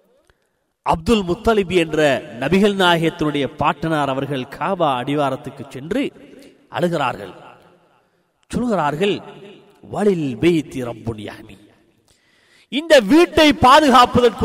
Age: 40-59